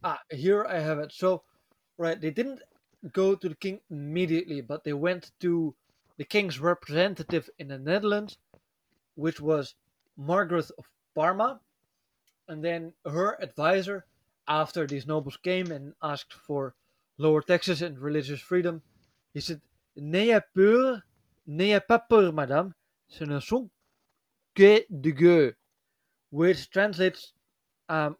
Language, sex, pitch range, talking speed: English, male, 145-185 Hz, 130 wpm